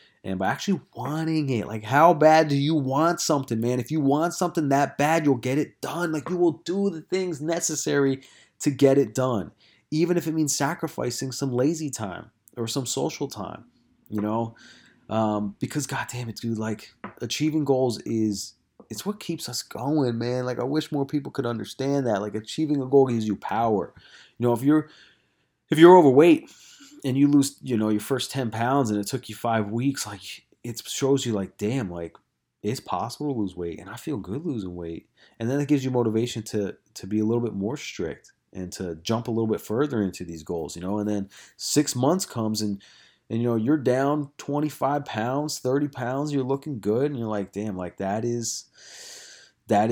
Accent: American